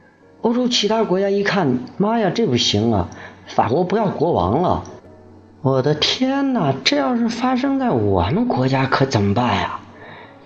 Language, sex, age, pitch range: Chinese, male, 50-69, 105-150 Hz